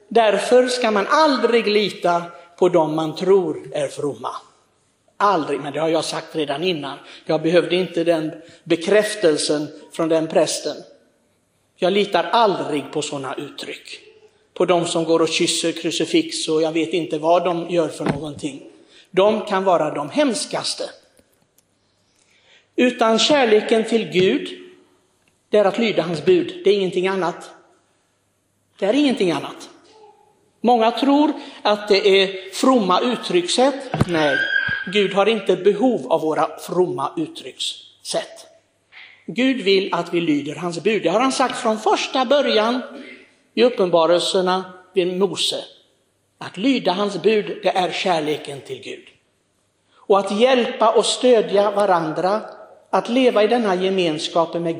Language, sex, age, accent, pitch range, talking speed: Swedish, male, 60-79, native, 170-255 Hz, 140 wpm